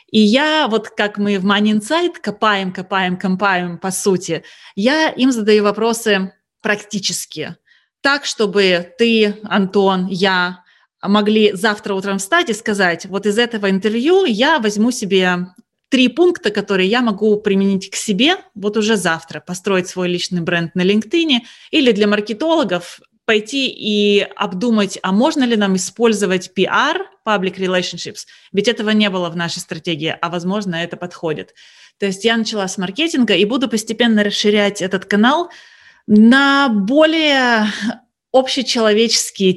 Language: Russian